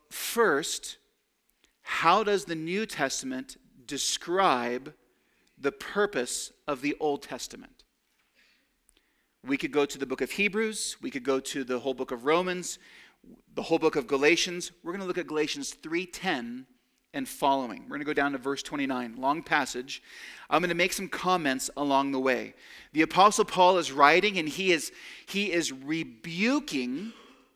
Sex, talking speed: male, 160 wpm